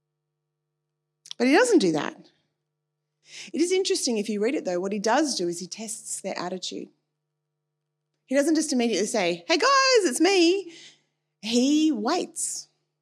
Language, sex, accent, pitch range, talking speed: English, female, Australian, 155-220 Hz, 150 wpm